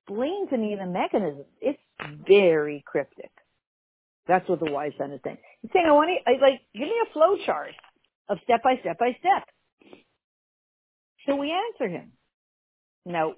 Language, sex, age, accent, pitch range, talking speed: English, female, 50-69, American, 160-260 Hz, 165 wpm